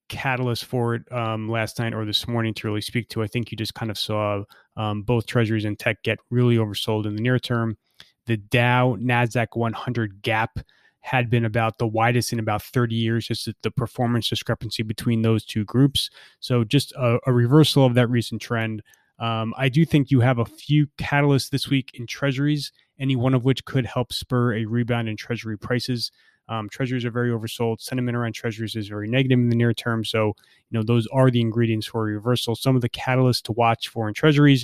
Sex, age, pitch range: male, 20-39, 110-130 Hz